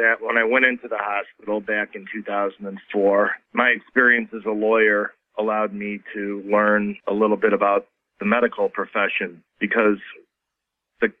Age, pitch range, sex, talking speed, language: 40-59, 100-115 Hz, male, 150 wpm, English